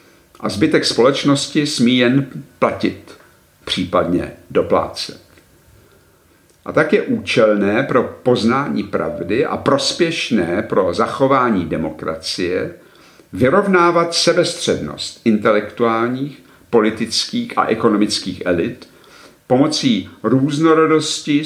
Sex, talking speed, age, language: male, 80 wpm, 50-69, Czech